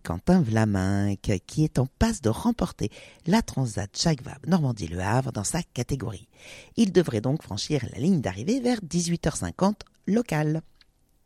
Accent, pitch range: French, 110-165 Hz